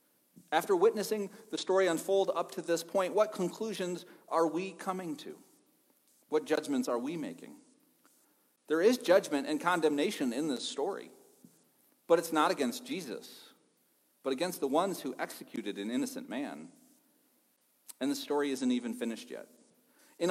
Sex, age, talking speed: male, 40-59, 150 wpm